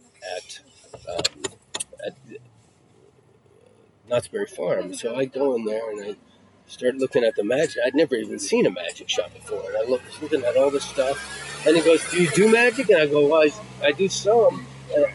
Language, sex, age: English, male, 40-59